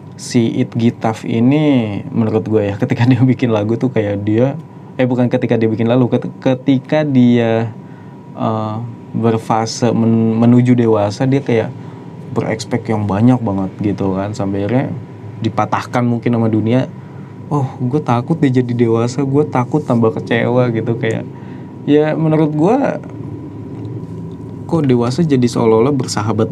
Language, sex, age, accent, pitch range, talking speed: Indonesian, male, 20-39, native, 110-135 Hz, 135 wpm